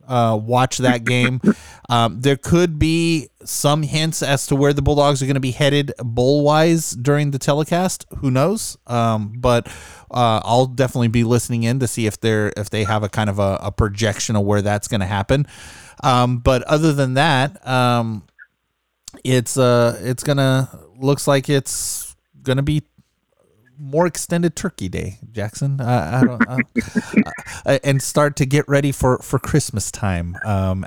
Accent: American